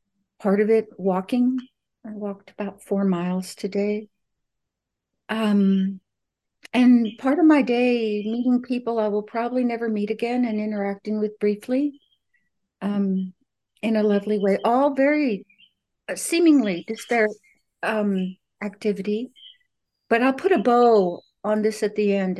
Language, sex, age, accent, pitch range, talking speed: English, female, 60-79, American, 195-240 Hz, 135 wpm